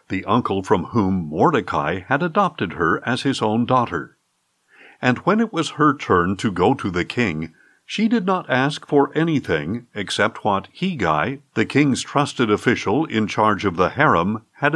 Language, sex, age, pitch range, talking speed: English, male, 50-69, 115-155 Hz, 170 wpm